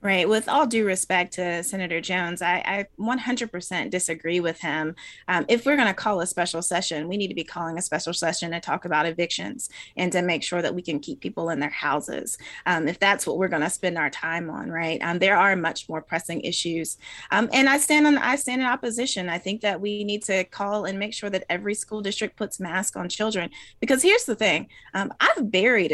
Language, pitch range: English, 180-225 Hz